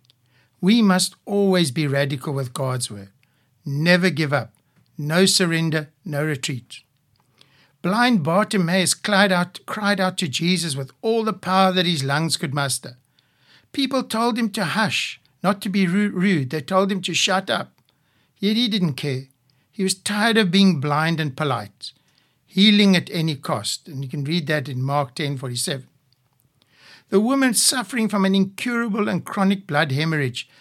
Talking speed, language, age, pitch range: 160 wpm, English, 60-79, 140-195 Hz